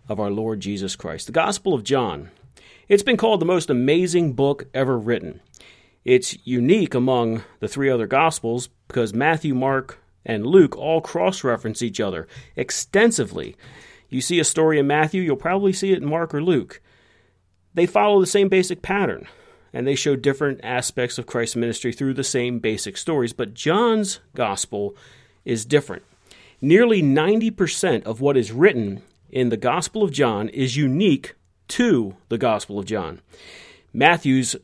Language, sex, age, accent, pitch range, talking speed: English, male, 40-59, American, 120-160 Hz, 160 wpm